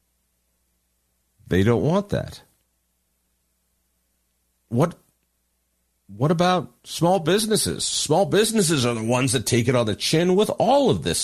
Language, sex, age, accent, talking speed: English, male, 50-69, American, 130 wpm